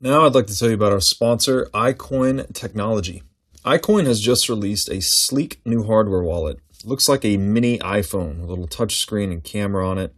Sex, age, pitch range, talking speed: male, 30-49, 90-115 Hz, 205 wpm